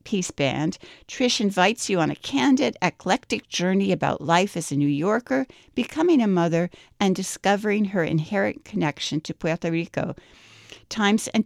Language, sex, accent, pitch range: English, female, American, 170-225 Hz